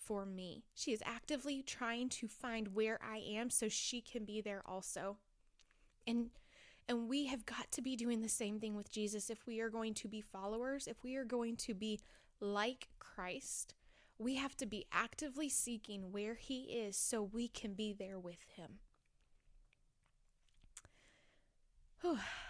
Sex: female